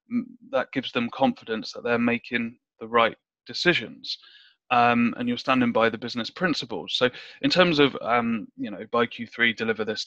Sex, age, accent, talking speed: male, 20-39, British, 175 wpm